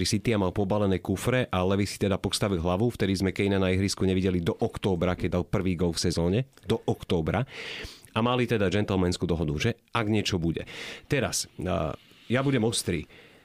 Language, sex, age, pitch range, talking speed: Slovak, male, 30-49, 95-125 Hz, 180 wpm